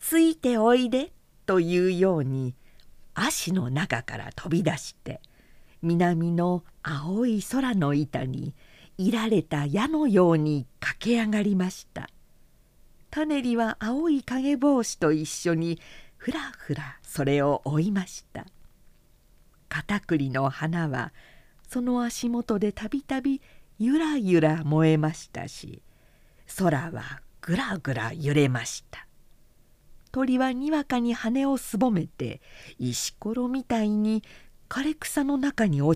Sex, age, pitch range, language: female, 50-69, 155-245 Hz, Japanese